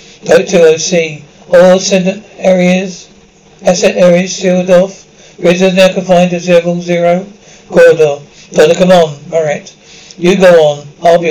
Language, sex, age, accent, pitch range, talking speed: English, male, 60-79, British, 165-190 Hz, 120 wpm